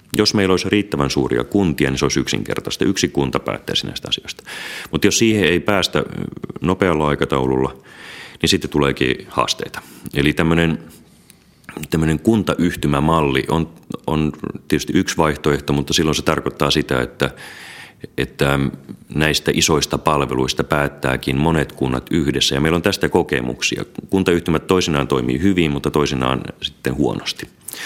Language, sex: Finnish, male